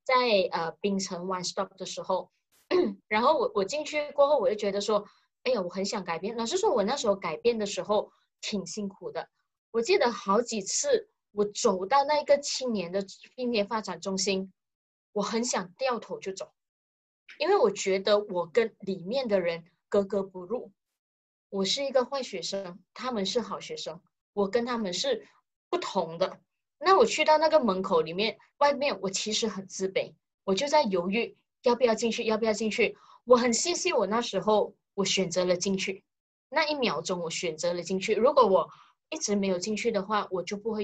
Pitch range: 190-285 Hz